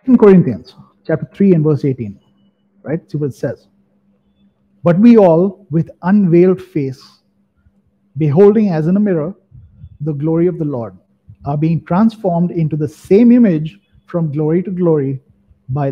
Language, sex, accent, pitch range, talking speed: English, male, Indian, 140-185 Hz, 150 wpm